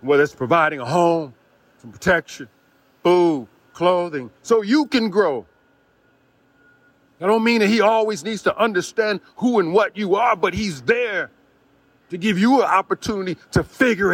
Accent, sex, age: American, male, 40-59